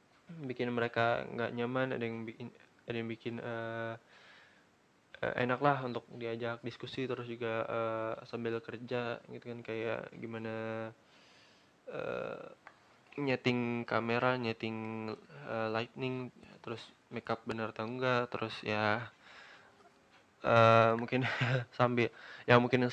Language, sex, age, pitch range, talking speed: Indonesian, male, 20-39, 115-130 Hz, 115 wpm